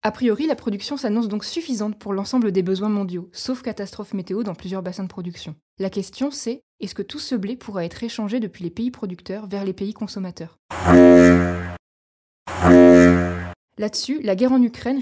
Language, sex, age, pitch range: French, female, 20-39, 185-230 Hz